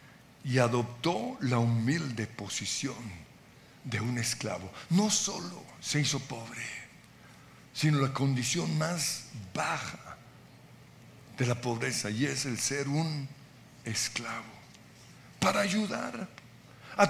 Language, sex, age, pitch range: Spanish, male, 60-79, 125-175 Hz